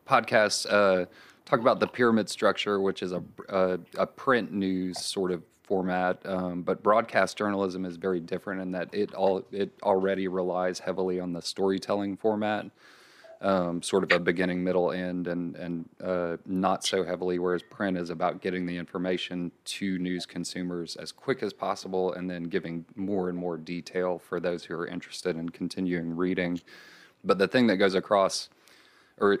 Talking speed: 175 wpm